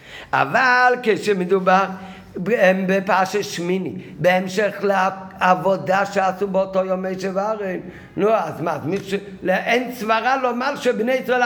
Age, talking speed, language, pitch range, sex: 50-69, 115 wpm, Hebrew, 155-225 Hz, male